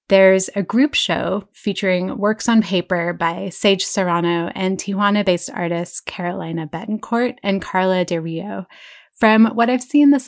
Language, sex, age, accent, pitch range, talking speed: English, female, 20-39, American, 180-220 Hz, 145 wpm